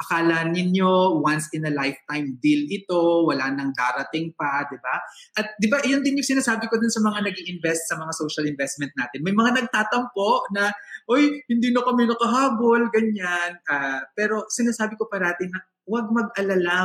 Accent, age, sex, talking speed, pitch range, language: Filipino, 20-39, male, 180 wpm, 155-225 Hz, English